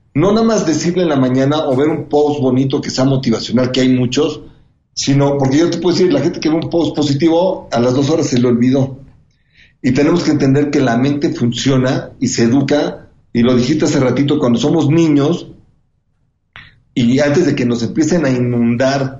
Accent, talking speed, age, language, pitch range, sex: Mexican, 205 wpm, 40-59, Spanish, 125-155 Hz, male